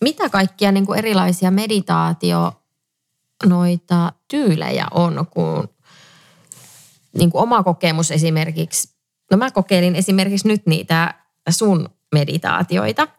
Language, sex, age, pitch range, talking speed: English, female, 20-39, 160-190 Hz, 95 wpm